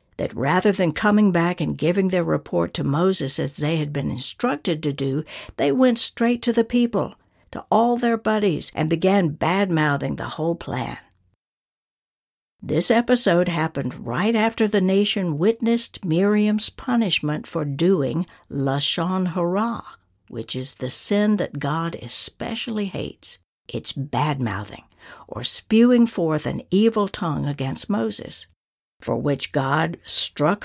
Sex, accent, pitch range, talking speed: female, American, 145-215 Hz, 135 wpm